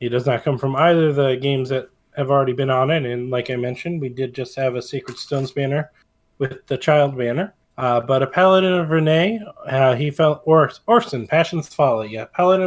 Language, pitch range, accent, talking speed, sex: English, 130-155 Hz, American, 220 wpm, male